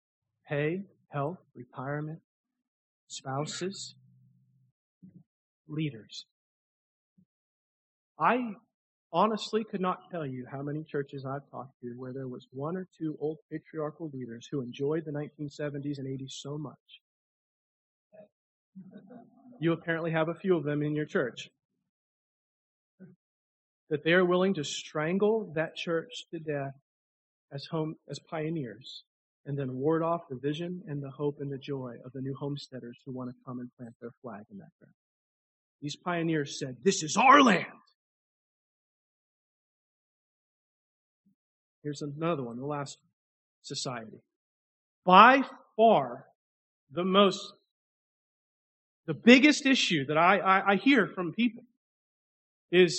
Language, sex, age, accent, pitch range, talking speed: English, male, 40-59, American, 135-190 Hz, 130 wpm